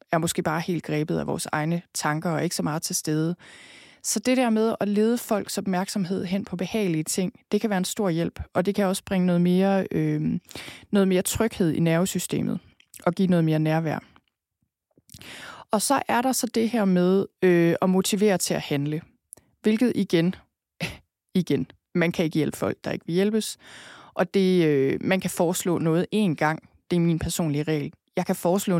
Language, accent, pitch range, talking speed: Danish, native, 165-200 Hz, 185 wpm